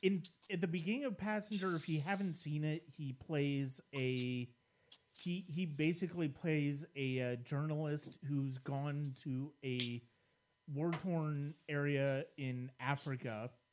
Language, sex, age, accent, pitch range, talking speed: English, male, 30-49, American, 130-165 Hz, 130 wpm